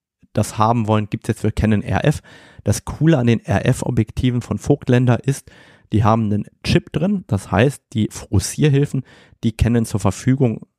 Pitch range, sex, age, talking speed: 105-125 Hz, male, 30-49, 165 wpm